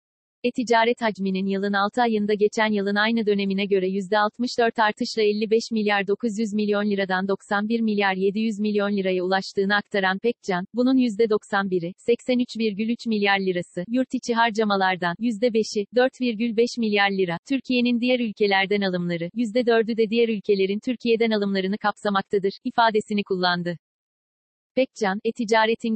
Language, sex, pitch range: Turkish, female, 200-235 Hz